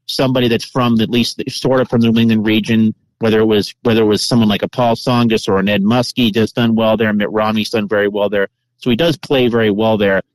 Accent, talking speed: American, 255 wpm